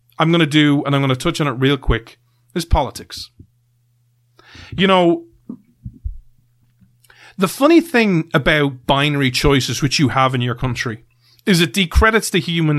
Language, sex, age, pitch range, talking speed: English, male, 30-49, 120-165 Hz, 160 wpm